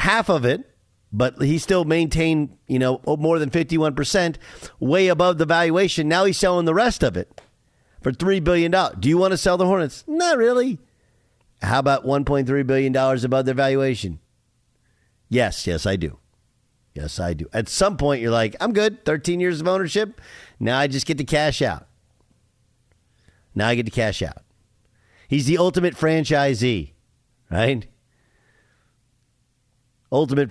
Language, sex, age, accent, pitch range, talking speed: English, male, 50-69, American, 110-150 Hz, 160 wpm